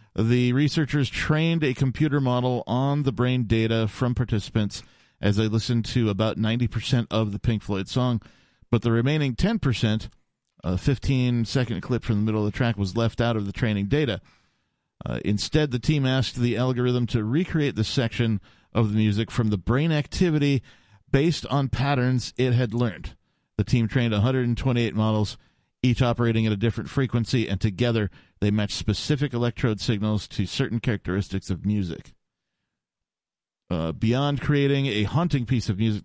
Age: 40-59